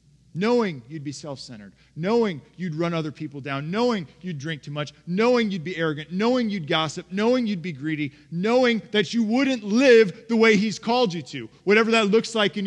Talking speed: 200 wpm